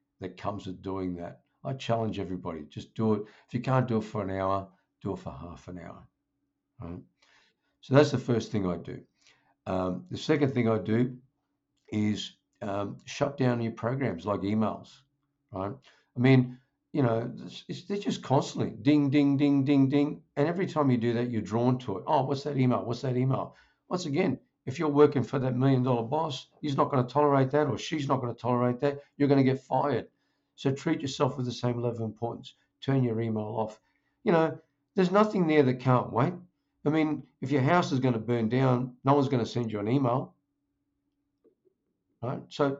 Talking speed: 205 wpm